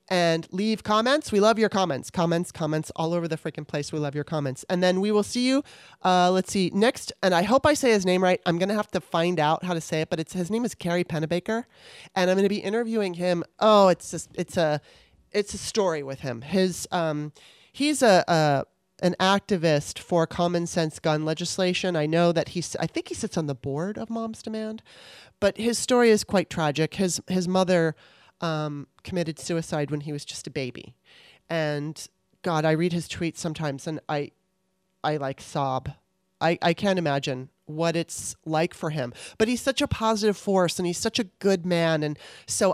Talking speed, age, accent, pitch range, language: 210 wpm, 30-49, American, 155-200 Hz, English